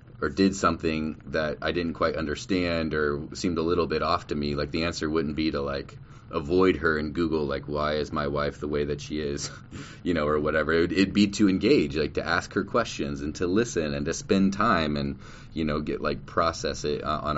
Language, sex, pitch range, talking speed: English, male, 75-100 Hz, 230 wpm